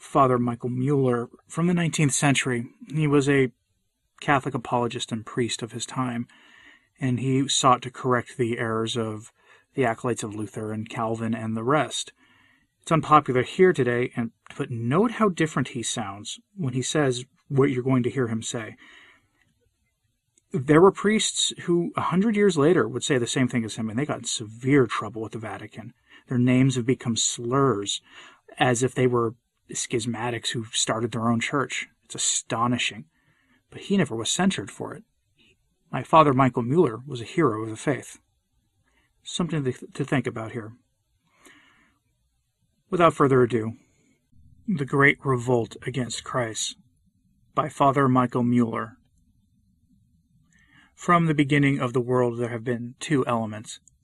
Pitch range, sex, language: 115-140 Hz, male, English